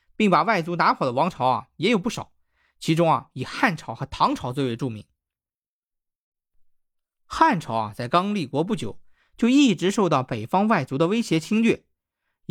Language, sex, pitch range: Chinese, male, 135-205 Hz